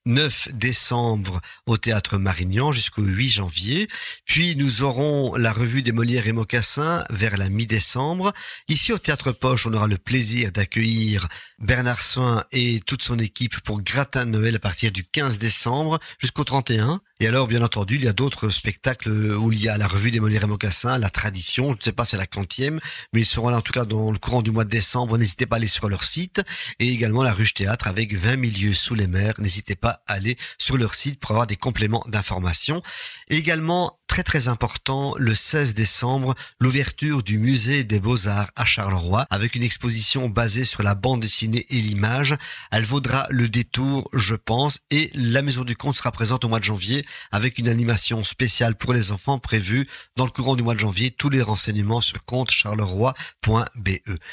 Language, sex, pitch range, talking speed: French, male, 110-130 Hz, 200 wpm